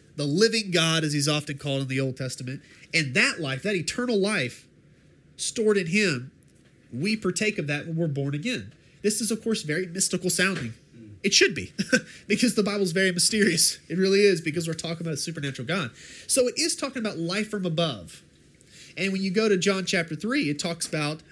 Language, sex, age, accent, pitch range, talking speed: English, male, 30-49, American, 150-210 Hz, 205 wpm